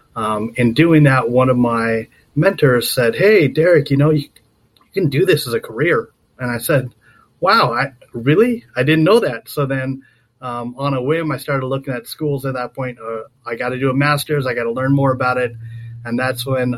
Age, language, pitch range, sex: 30-49, English, 125-145 Hz, male